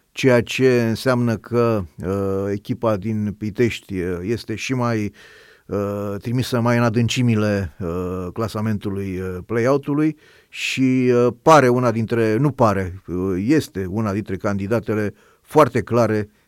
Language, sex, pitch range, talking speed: Romanian, male, 100-125 Hz, 125 wpm